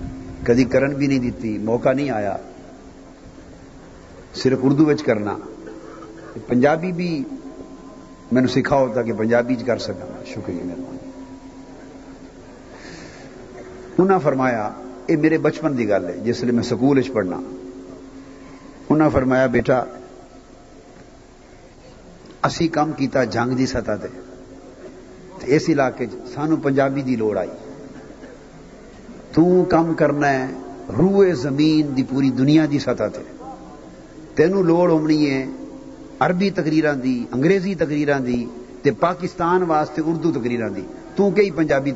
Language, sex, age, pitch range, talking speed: Urdu, male, 50-69, 125-165 Hz, 110 wpm